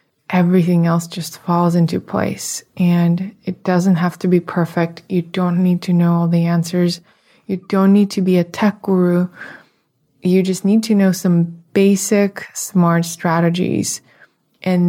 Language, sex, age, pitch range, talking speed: English, female, 20-39, 170-190 Hz, 155 wpm